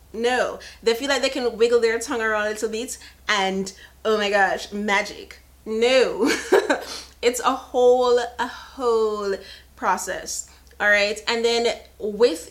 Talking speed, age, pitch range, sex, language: 140 wpm, 30-49, 180-230 Hz, female, English